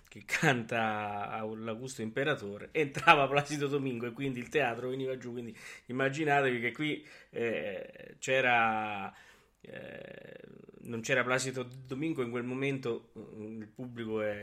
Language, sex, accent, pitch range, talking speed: Italian, male, native, 110-135 Hz, 130 wpm